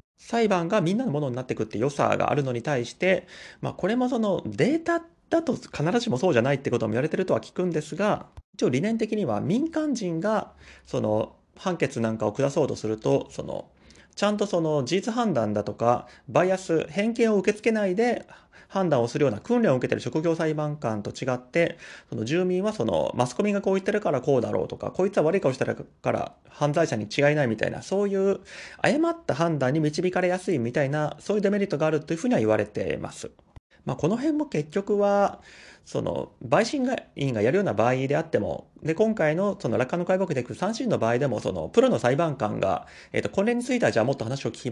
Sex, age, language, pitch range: male, 30-49, Japanese, 125-205 Hz